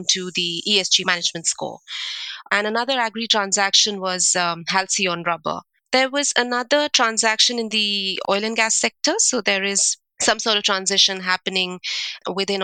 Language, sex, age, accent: English, female, 30-49, Indian